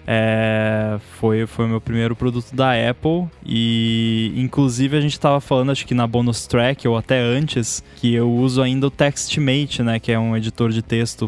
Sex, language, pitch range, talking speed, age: male, Portuguese, 115-140 Hz, 180 wpm, 10-29